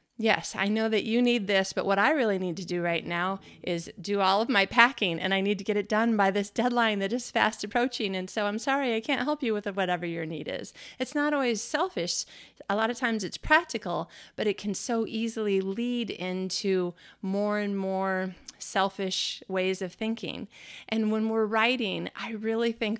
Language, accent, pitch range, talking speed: English, American, 185-230 Hz, 210 wpm